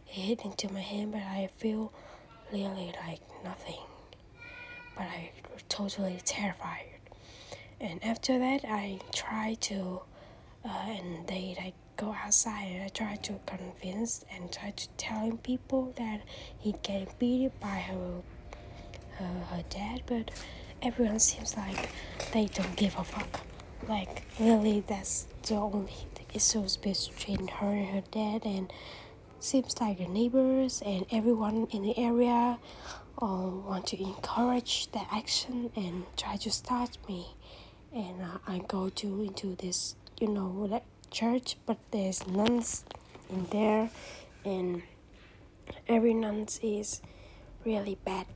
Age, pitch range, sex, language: 10-29, 190-220 Hz, female, Vietnamese